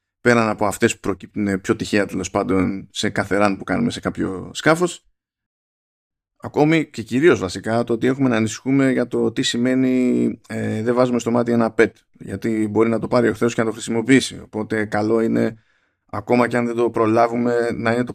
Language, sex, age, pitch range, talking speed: Greek, male, 20-39, 100-125 Hz, 190 wpm